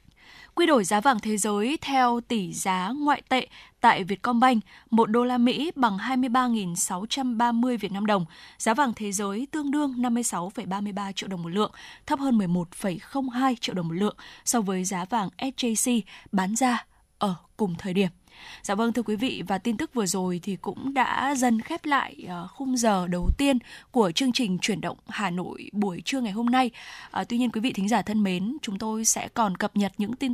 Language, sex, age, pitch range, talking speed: Vietnamese, female, 10-29, 200-250 Hz, 195 wpm